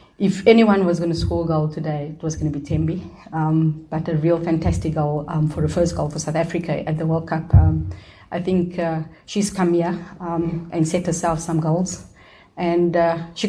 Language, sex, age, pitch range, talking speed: English, female, 30-49, 160-180 Hz, 215 wpm